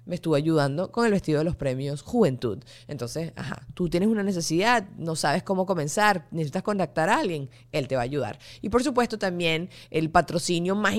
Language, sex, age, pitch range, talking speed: Spanish, female, 20-39, 150-195 Hz, 195 wpm